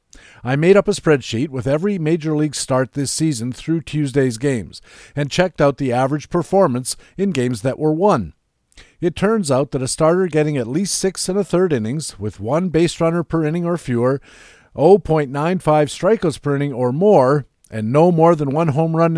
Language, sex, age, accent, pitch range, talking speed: English, male, 50-69, American, 130-170 Hz, 190 wpm